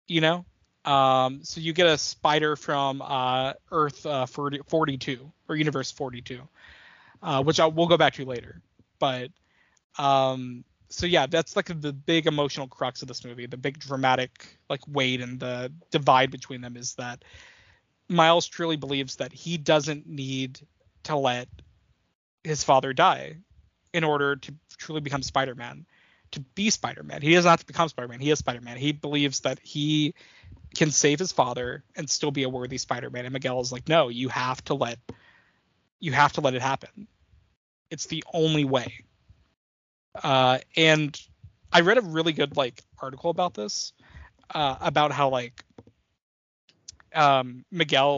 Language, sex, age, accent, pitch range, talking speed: English, male, 20-39, American, 125-155 Hz, 165 wpm